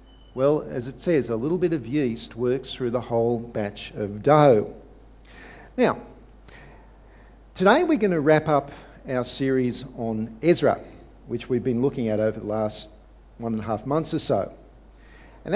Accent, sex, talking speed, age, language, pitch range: Australian, male, 165 wpm, 50-69, English, 120-175 Hz